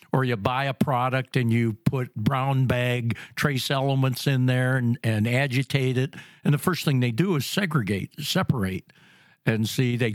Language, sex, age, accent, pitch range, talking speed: English, male, 60-79, American, 115-145 Hz, 175 wpm